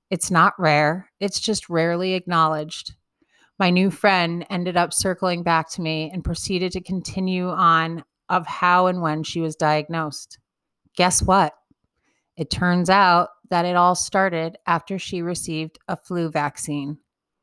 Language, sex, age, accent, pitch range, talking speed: English, female, 30-49, American, 155-185 Hz, 150 wpm